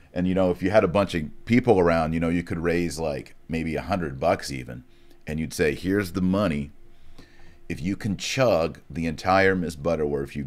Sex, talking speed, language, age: male, 210 wpm, English, 40-59